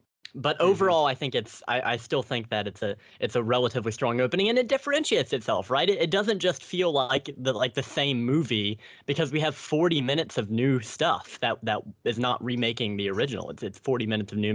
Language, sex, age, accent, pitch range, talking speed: English, male, 10-29, American, 115-150 Hz, 225 wpm